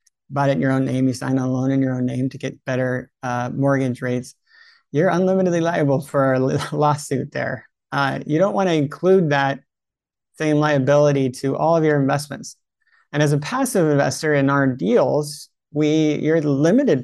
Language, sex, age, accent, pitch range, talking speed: English, male, 30-49, American, 130-150 Hz, 185 wpm